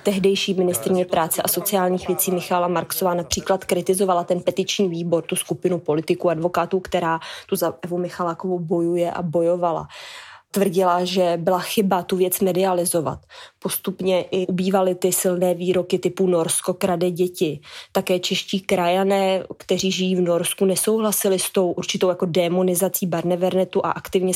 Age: 20-39